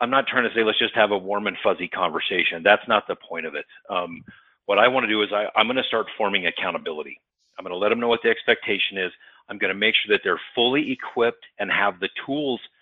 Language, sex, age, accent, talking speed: English, male, 40-59, American, 260 wpm